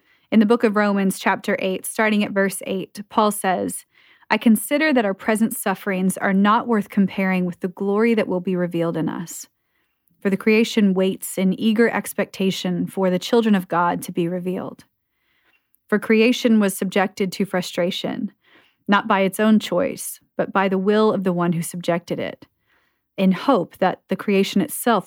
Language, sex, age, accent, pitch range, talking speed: English, female, 30-49, American, 180-220 Hz, 175 wpm